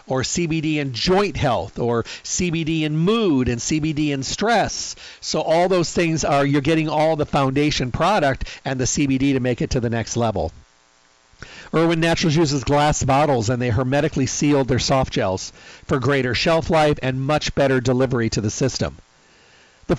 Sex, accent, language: male, American, English